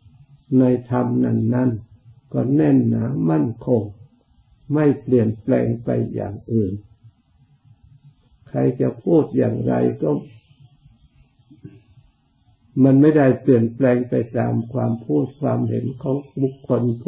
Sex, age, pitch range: male, 60-79, 115-130 Hz